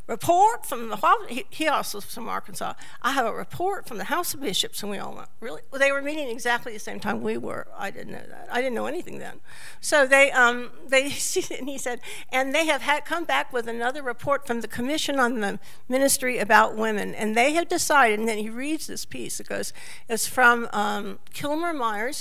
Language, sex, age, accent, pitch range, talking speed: English, female, 60-79, American, 225-330 Hz, 225 wpm